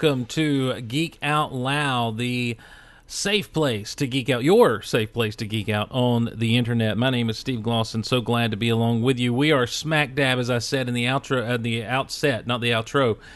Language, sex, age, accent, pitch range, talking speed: English, male, 40-59, American, 115-135 Hz, 220 wpm